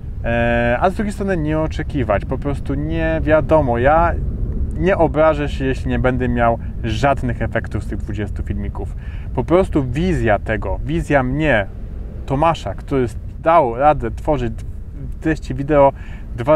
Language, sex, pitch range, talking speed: Polish, male, 115-145 Hz, 140 wpm